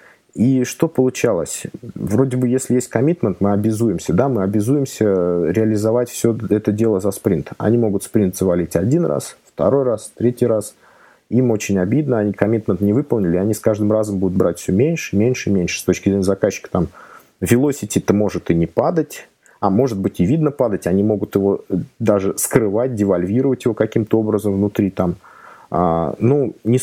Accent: native